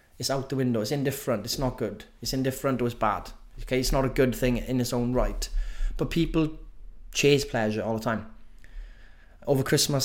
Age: 20-39